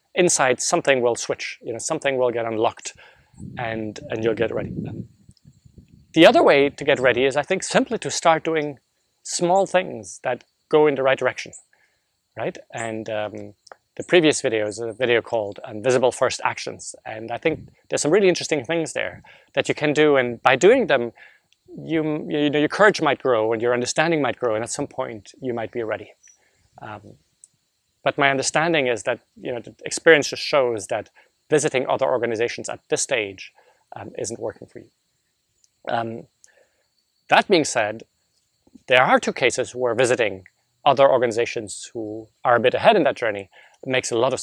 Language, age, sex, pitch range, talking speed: English, 30-49, male, 115-155 Hz, 180 wpm